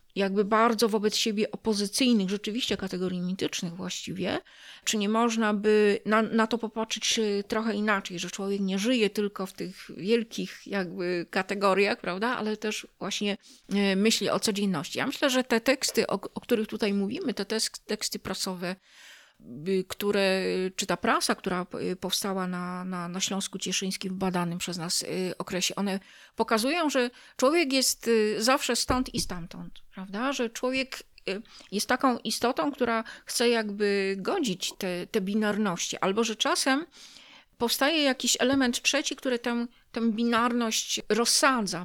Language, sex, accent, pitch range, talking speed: Polish, female, native, 195-235 Hz, 140 wpm